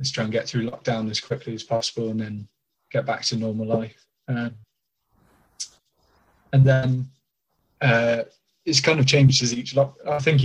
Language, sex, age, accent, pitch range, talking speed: English, male, 20-39, British, 110-130 Hz, 170 wpm